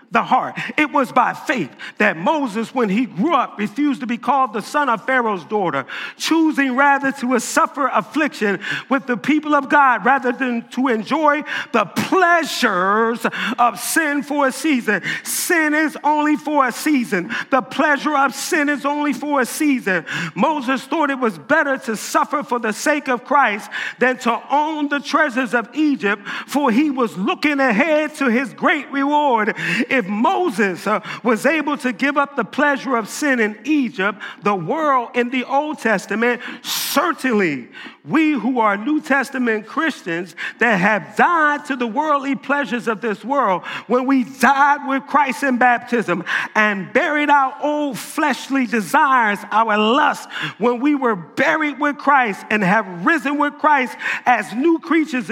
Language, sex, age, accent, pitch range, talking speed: English, male, 40-59, American, 230-295 Hz, 165 wpm